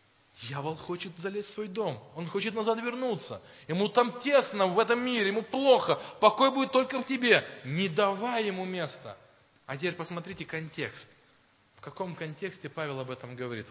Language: Russian